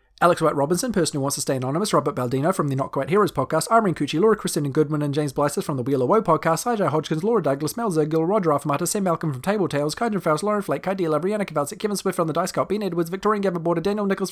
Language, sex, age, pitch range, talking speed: English, male, 30-49, 155-235 Hz, 265 wpm